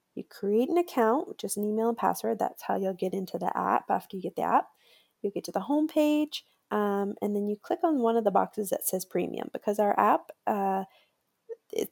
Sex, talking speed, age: female, 220 wpm, 20-39